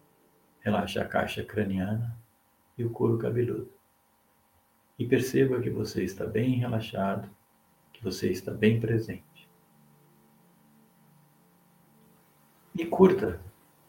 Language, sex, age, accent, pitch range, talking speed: Portuguese, male, 60-79, Brazilian, 95-120 Hz, 95 wpm